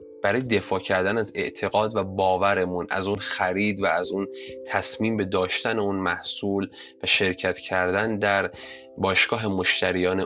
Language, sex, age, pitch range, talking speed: Persian, male, 20-39, 95-130 Hz, 140 wpm